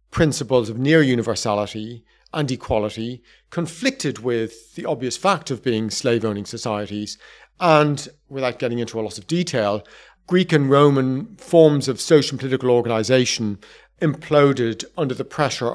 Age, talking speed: 40-59, 135 wpm